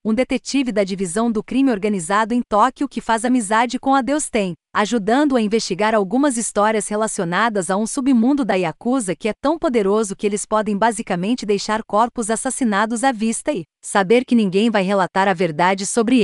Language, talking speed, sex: Portuguese, 175 wpm, female